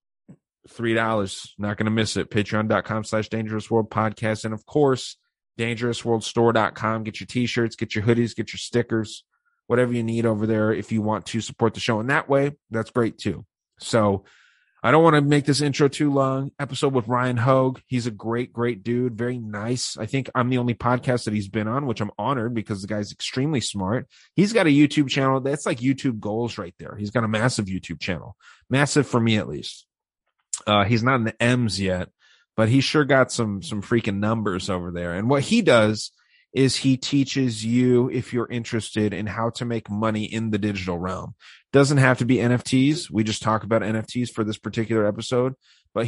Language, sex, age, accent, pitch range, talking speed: English, male, 30-49, American, 110-130 Hz, 205 wpm